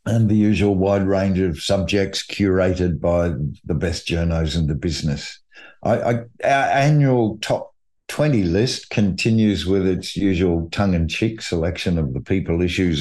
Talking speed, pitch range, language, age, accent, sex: 155 wpm, 85-110 Hz, English, 50-69, Australian, male